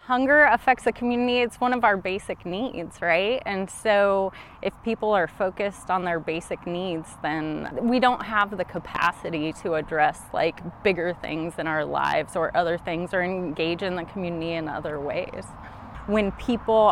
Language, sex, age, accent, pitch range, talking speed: English, female, 20-39, American, 170-215 Hz, 170 wpm